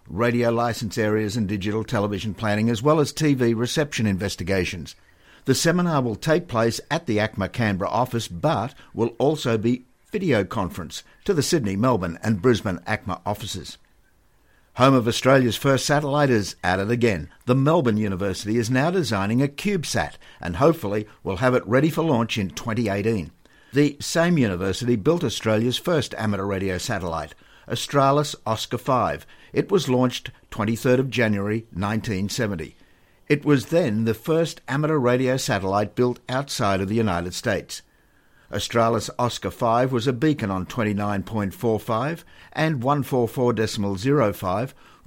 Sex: male